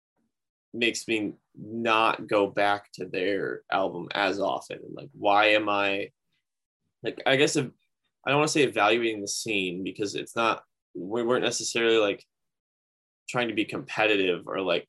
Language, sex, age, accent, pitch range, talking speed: English, male, 10-29, American, 100-125 Hz, 155 wpm